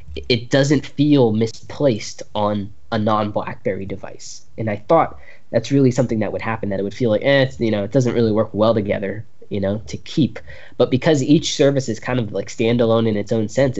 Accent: American